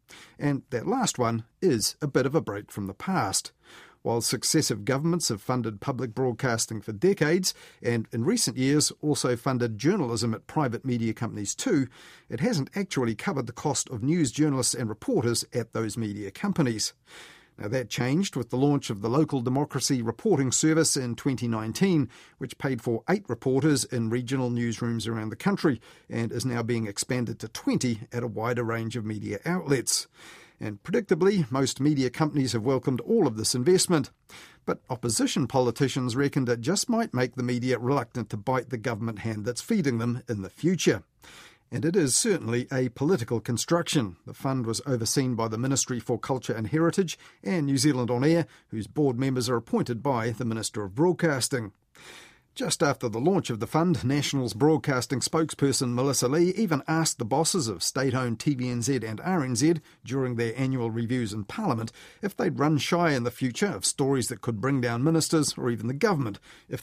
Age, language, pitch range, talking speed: 50-69, English, 115-150 Hz, 180 wpm